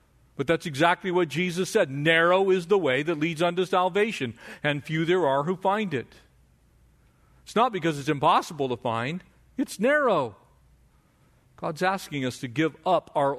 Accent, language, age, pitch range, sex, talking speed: American, English, 50-69, 120-150 Hz, male, 165 wpm